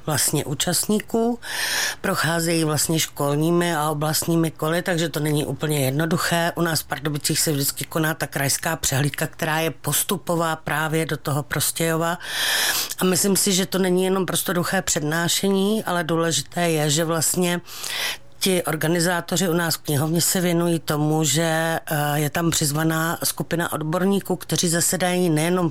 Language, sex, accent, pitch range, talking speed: Czech, female, native, 155-175 Hz, 140 wpm